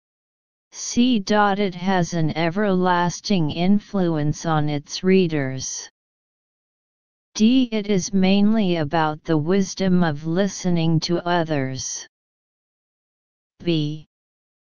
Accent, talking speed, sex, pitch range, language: American, 85 wpm, female, 160-195 Hz, English